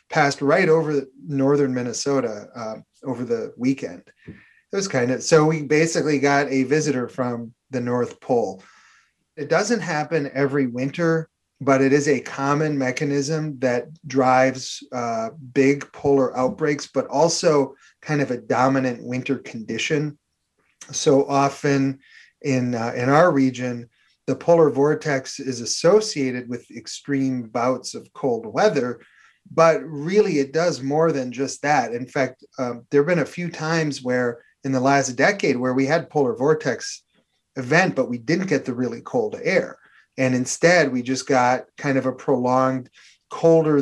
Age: 30-49